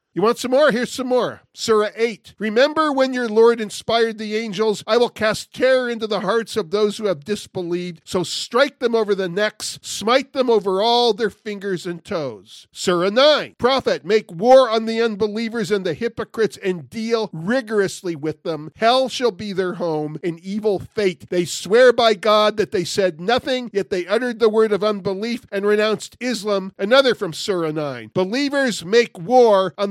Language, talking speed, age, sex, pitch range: English, 185 wpm, 50-69, male, 185-230 Hz